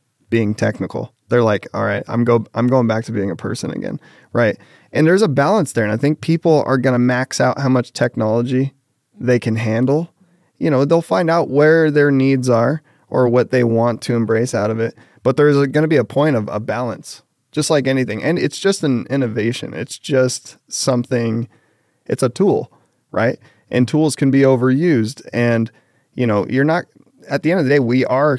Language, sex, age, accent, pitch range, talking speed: English, male, 20-39, American, 115-135 Hz, 205 wpm